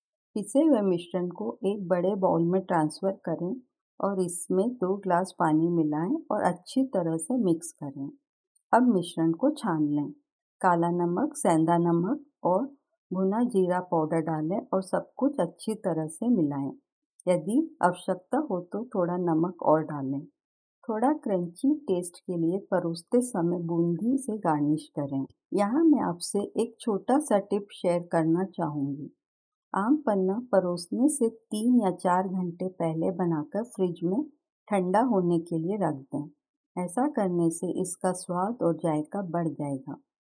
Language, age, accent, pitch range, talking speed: Hindi, 50-69, native, 170-230 Hz, 145 wpm